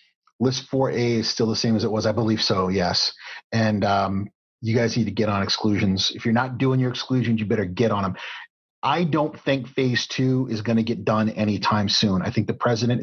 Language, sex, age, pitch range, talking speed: English, male, 30-49, 110-130 Hz, 225 wpm